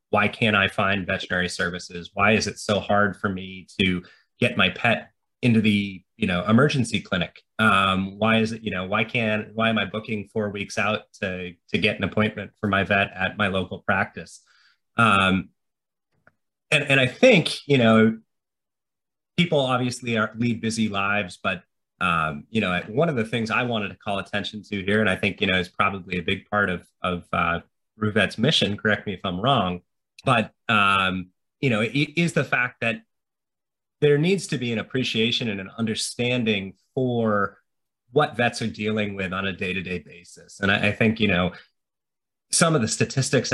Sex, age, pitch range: male, 30-49, 95-115 Hz